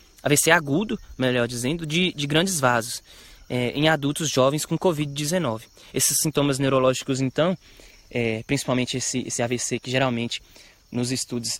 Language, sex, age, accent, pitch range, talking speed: Portuguese, male, 20-39, Brazilian, 125-160 Hz, 140 wpm